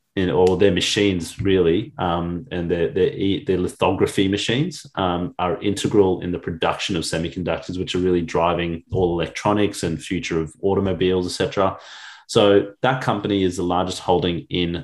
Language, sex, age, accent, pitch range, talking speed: English, male, 30-49, Australian, 90-100 Hz, 150 wpm